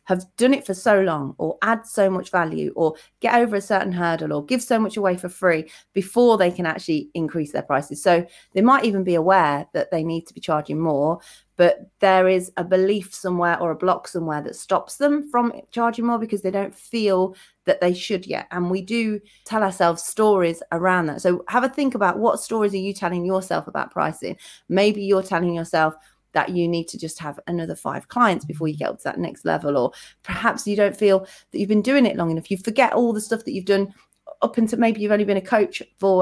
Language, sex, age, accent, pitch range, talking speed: English, female, 30-49, British, 175-225 Hz, 230 wpm